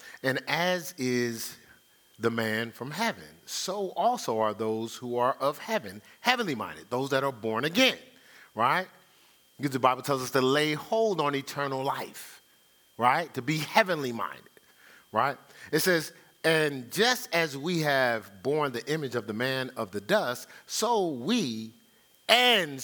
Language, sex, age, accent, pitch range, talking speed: English, male, 40-59, American, 125-185 Hz, 155 wpm